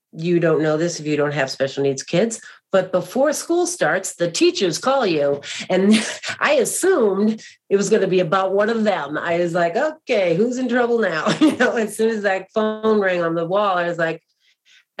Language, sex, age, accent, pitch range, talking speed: English, female, 40-59, American, 160-205 Hz, 215 wpm